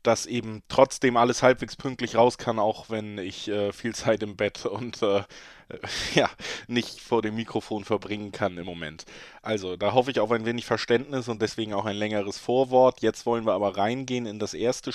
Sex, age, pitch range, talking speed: male, 20-39, 110-120 Hz, 195 wpm